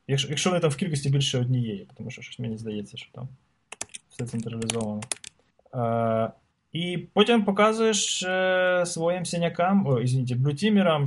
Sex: male